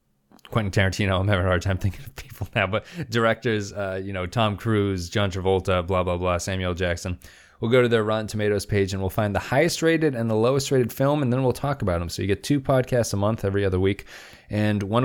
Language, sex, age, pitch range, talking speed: English, male, 20-39, 90-115 Hz, 245 wpm